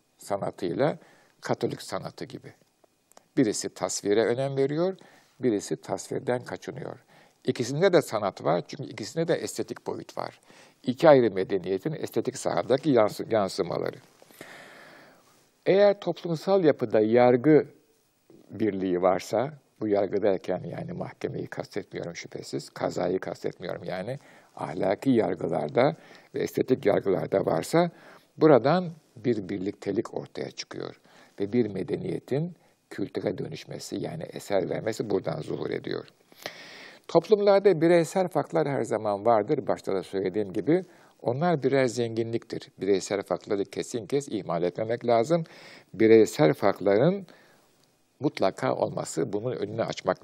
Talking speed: 110 wpm